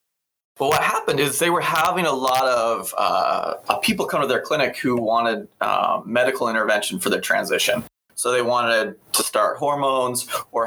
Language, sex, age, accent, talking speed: English, male, 20-39, American, 175 wpm